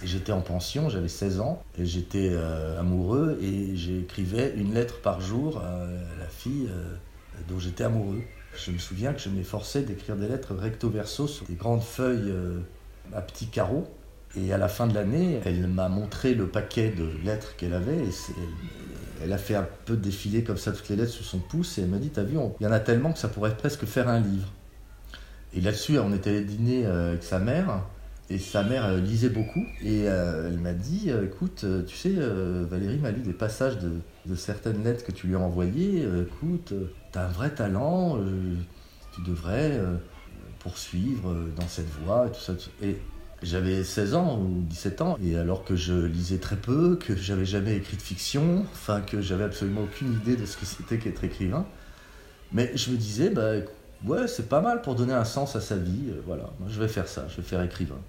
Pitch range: 90-115 Hz